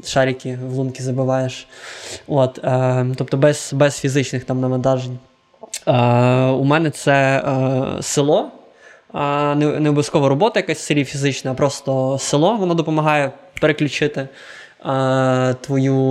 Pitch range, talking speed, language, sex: 130-145 Hz, 125 wpm, Ukrainian, male